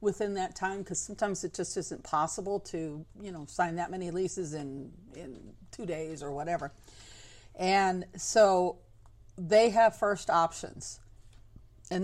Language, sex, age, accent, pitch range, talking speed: English, female, 50-69, American, 150-195 Hz, 145 wpm